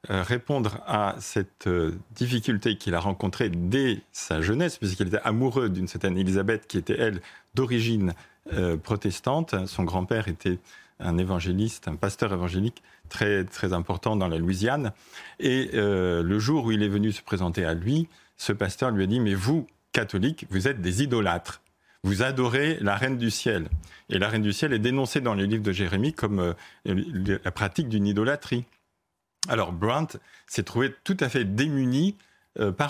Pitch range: 95-125 Hz